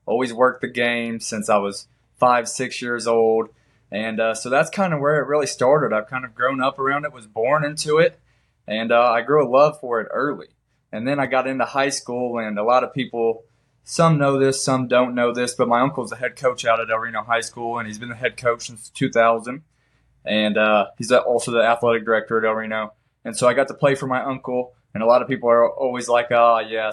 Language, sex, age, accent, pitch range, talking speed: English, male, 20-39, American, 115-135 Hz, 245 wpm